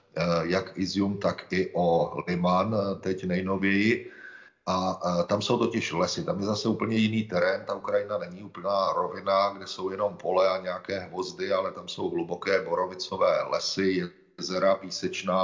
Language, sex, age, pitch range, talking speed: Slovak, male, 40-59, 90-120 Hz, 150 wpm